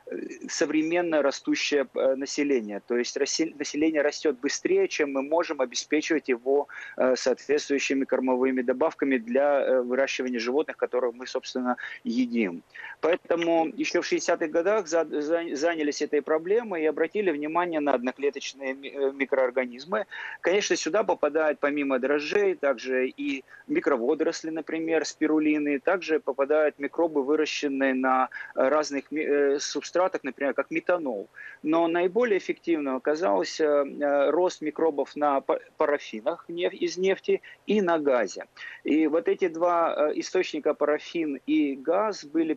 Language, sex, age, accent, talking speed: Russian, male, 30-49, native, 110 wpm